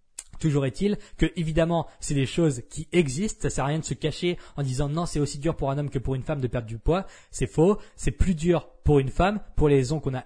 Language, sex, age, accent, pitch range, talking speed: French, male, 20-39, French, 135-170 Hz, 285 wpm